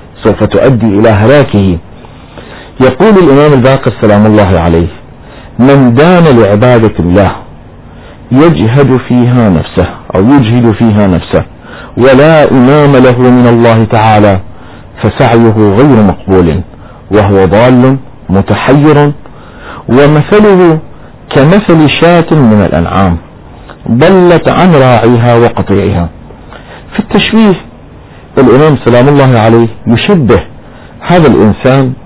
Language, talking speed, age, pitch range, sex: Arabic, 95 wpm, 50-69, 100-145 Hz, male